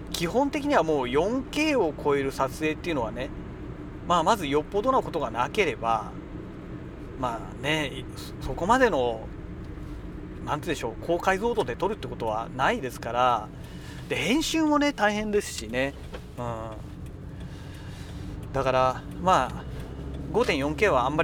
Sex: male